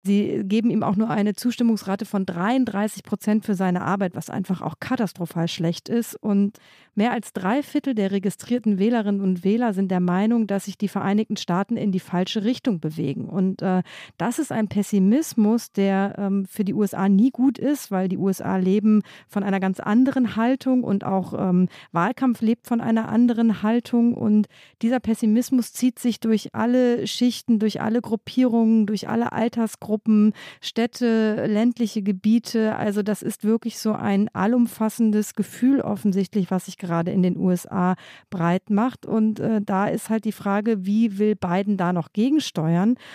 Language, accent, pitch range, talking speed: German, German, 190-230 Hz, 170 wpm